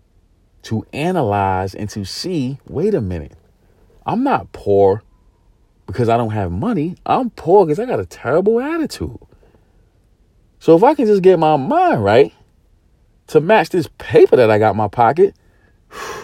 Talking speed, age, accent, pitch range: 160 wpm, 40-59, American, 95-115 Hz